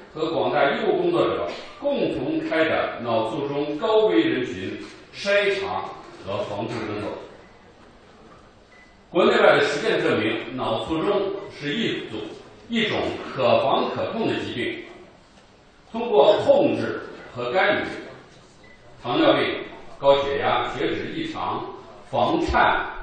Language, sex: Chinese, male